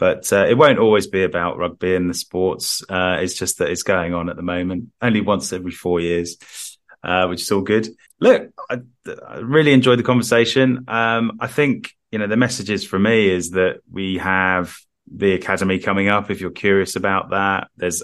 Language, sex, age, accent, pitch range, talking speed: English, male, 30-49, British, 90-110 Hz, 205 wpm